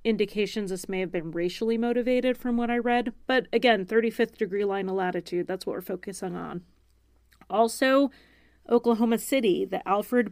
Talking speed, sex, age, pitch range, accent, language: 165 wpm, female, 30-49, 190-230 Hz, American, English